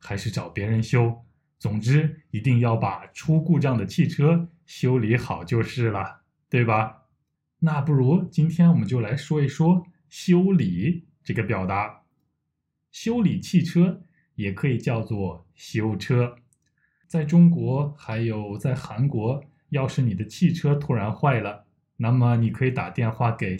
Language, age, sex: Chinese, 20-39, male